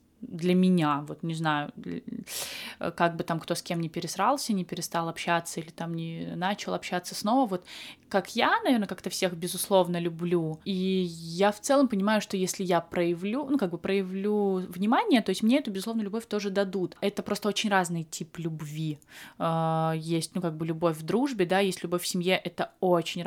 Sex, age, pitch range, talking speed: female, 20-39, 165-190 Hz, 185 wpm